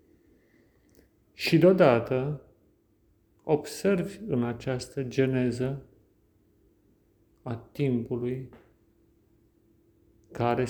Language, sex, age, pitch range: Romanian, male, 40-59, 105-140 Hz